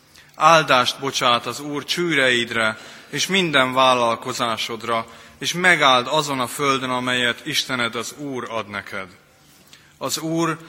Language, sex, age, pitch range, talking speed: Hungarian, male, 30-49, 115-135 Hz, 120 wpm